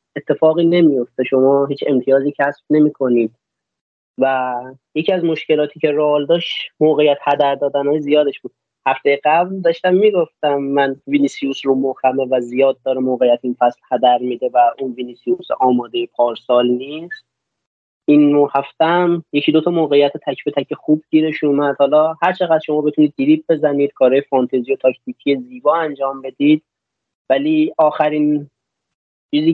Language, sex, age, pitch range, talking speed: Persian, male, 30-49, 135-165 Hz, 140 wpm